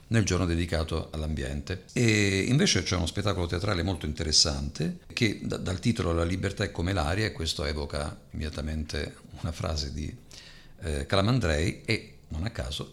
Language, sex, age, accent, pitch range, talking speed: Italian, male, 50-69, native, 85-120 Hz, 155 wpm